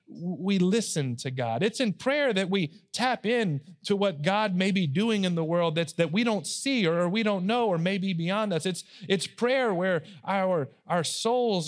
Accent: American